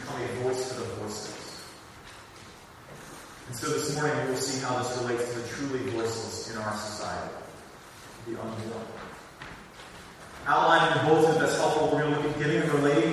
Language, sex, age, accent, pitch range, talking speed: English, male, 30-49, American, 120-175 Hz, 170 wpm